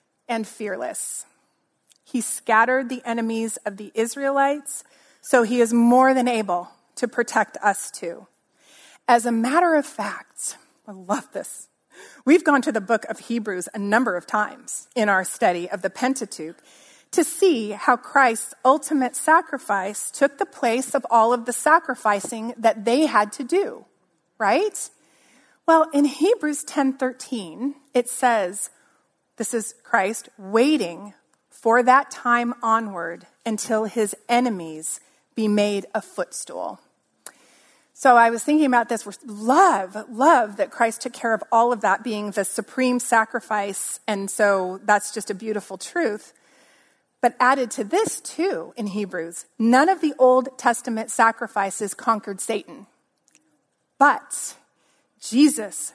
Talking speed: 140 wpm